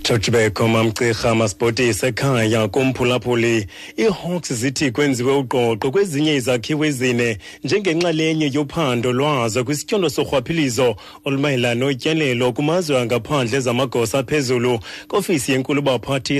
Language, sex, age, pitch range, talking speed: English, male, 30-49, 115-140 Hz, 125 wpm